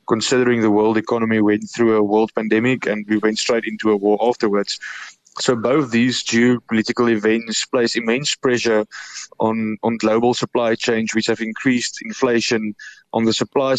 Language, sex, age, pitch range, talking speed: English, male, 20-39, 110-120 Hz, 160 wpm